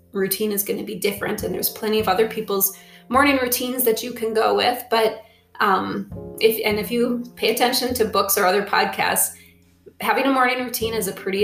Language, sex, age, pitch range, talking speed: English, female, 20-39, 195-245 Hz, 205 wpm